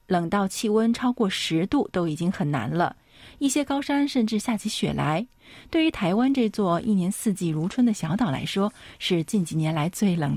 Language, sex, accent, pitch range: Chinese, female, native, 170-235 Hz